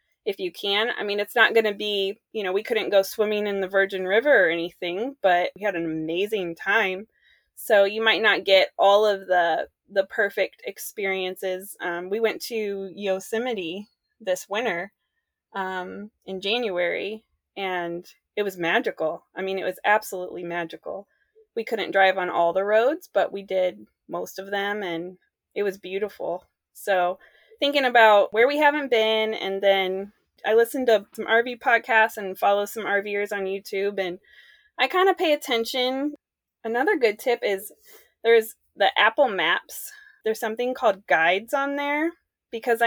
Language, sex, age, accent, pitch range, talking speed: English, female, 20-39, American, 190-240 Hz, 165 wpm